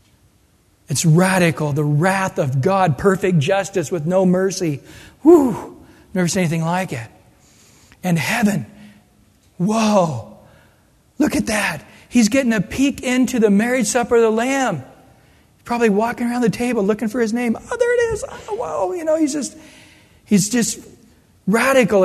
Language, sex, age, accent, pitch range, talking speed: English, male, 40-59, American, 180-225 Hz, 145 wpm